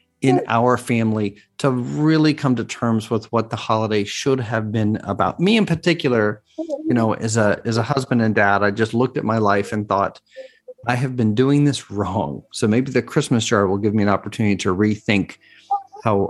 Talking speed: 205 wpm